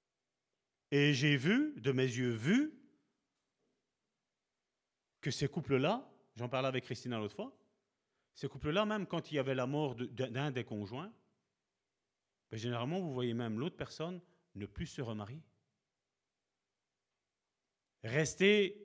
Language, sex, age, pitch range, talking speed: French, male, 40-59, 110-160 Hz, 125 wpm